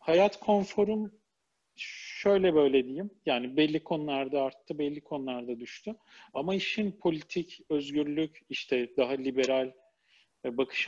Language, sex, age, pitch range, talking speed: Turkish, male, 40-59, 135-170 Hz, 110 wpm